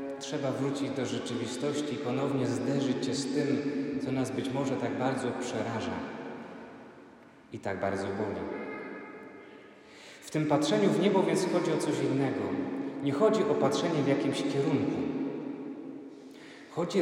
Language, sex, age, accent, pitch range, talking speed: Polish, male, 40-59, native, 140-180 Hz, 140 wpm